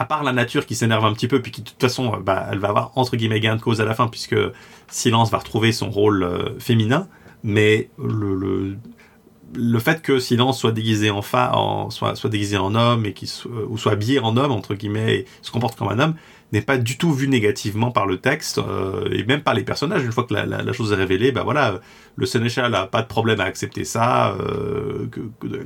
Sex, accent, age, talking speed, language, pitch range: male, French, 30-49, 240 wpm, French, 105-125 Hz